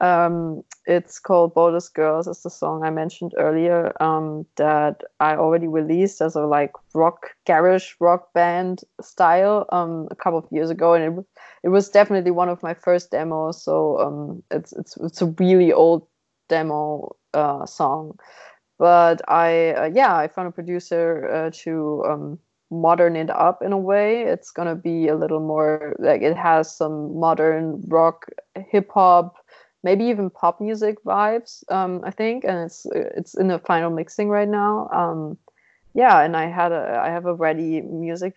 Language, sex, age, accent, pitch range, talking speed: English, female, 20-39, German, 160-185 Hz, 175 wpm